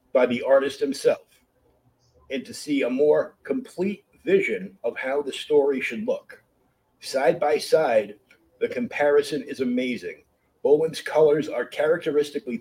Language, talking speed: English, 135 wpm